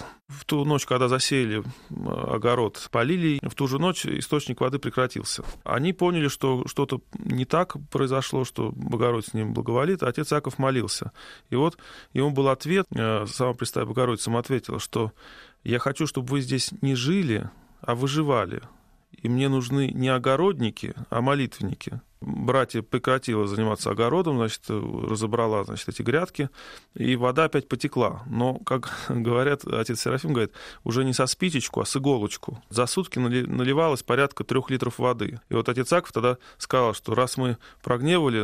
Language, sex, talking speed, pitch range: Russian, male, 155 wpm, 115-140 Hz